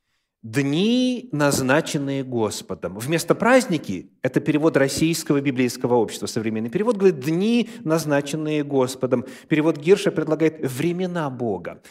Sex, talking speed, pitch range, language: male, 110 wpm, 130-180 Hz, Russian